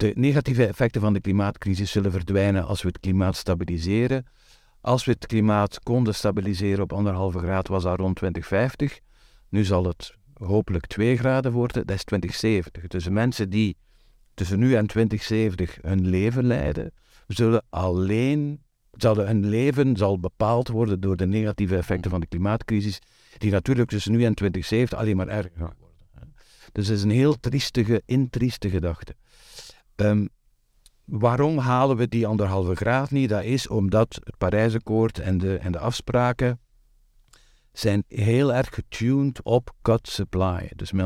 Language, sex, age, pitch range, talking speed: Dutch, male, 50-69, 95-120 Hz, 155 wpm